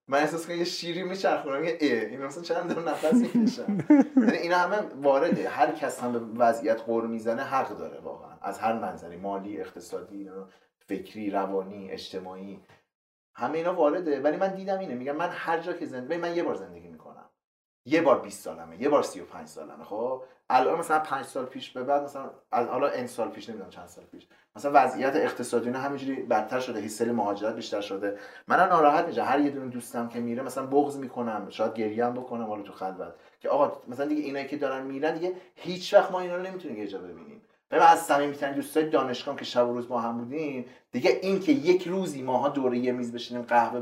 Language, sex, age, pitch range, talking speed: Persian, male, 30-49, 120-165 Hz, 205 wpm